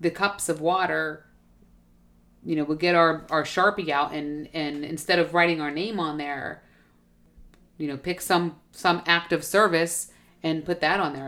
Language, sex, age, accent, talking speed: English, female, 40-59, American, 180 wpm